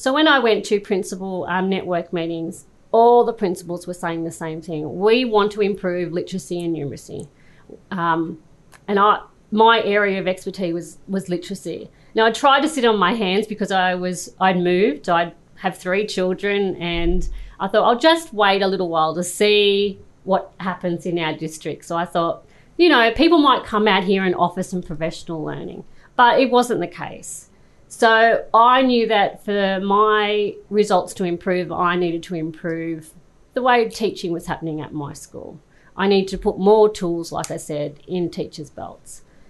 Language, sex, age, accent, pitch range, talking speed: English, female, 40-59, Australian, 170-210 Hz, 180 wpm